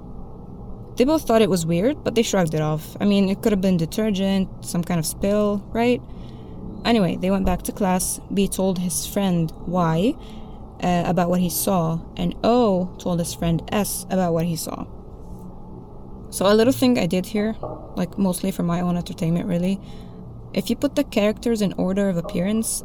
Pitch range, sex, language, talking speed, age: 170-215 Hz, female, English, 190 wpm, 20-39